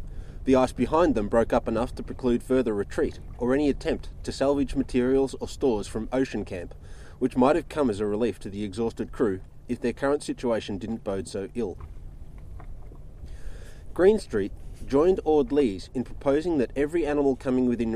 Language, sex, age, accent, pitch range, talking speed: English, male, 30-49, Australian, 100-135 Hz, 175 wpm